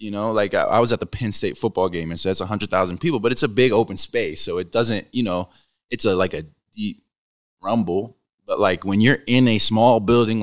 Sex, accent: male, American